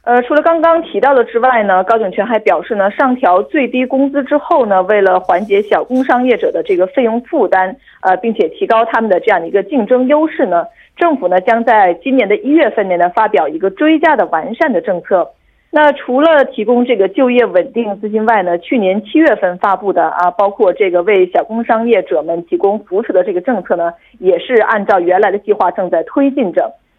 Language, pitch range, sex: Korean, 190-280 Hz, female